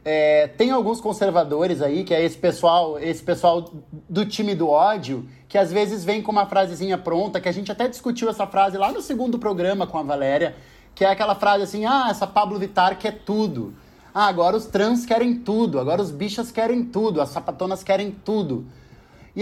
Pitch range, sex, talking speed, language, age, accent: 180-225 Hz, male, 200 wpm, Portuguese, 20-39, Brazilian